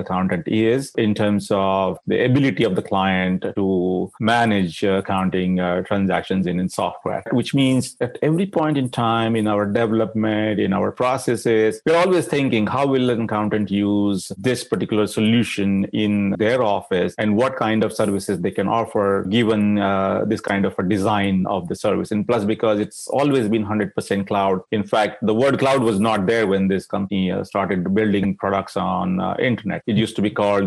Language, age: English, 30-49